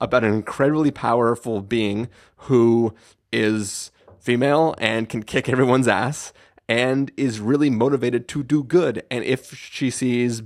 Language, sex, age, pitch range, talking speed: English, male, 30-49, 110-130 Hz, 140 wpm